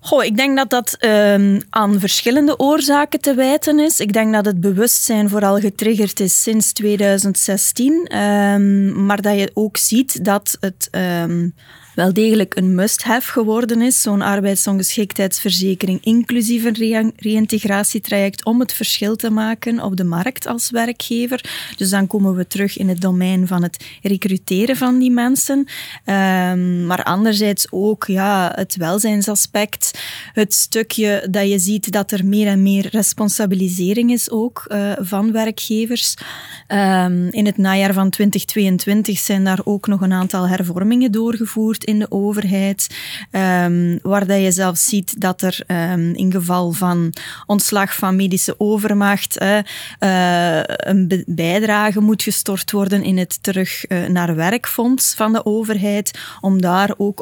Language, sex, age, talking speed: Dutch, female, 20-39, 135 wpm